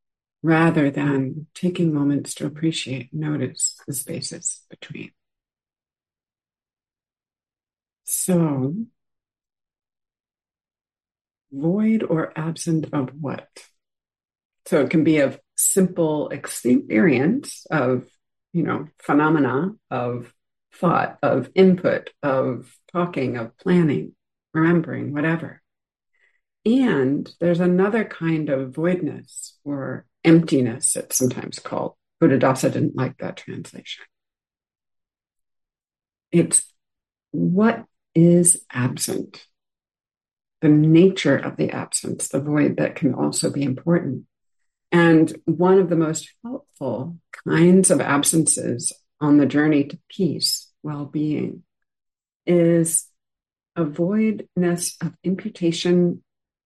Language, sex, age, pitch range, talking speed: English, female, 50-69, 135-175 Hz, 95 wpm